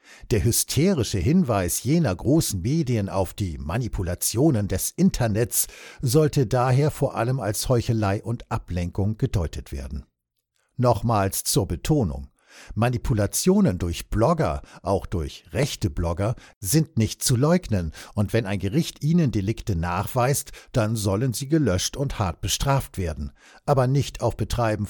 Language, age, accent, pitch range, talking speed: Dutch, 60-79, German, 100-135 Hz, 130 wpm